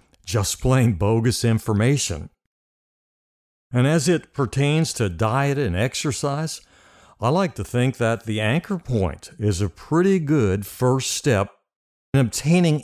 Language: English